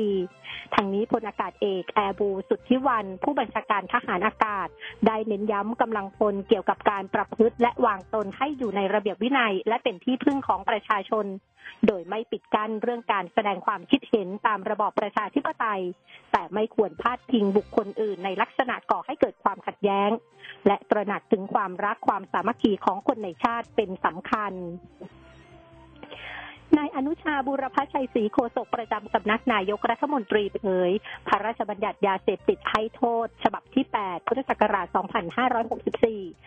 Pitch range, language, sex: 200-235 Hz, Thai, female